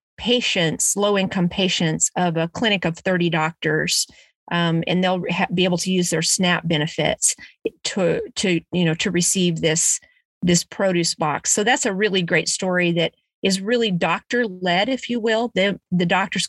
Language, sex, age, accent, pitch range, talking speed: English, female, 40-59, American, 170-195 Hz, 170 wpm